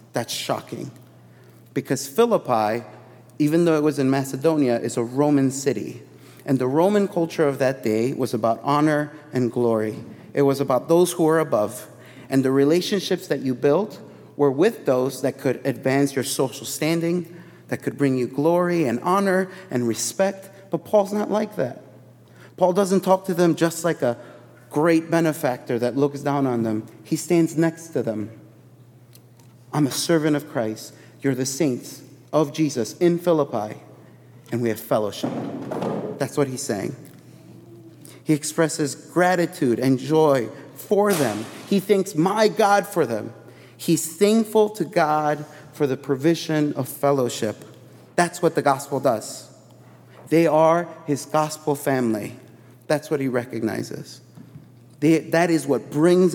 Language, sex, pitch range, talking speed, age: English, male, 125-165 Hz, 150 wpm, 30-49